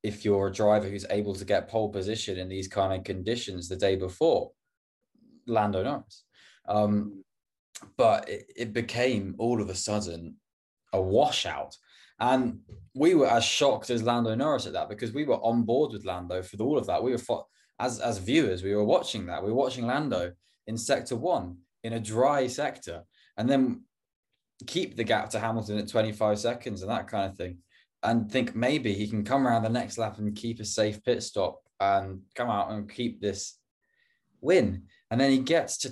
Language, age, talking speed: English, 20-39, 195 wpm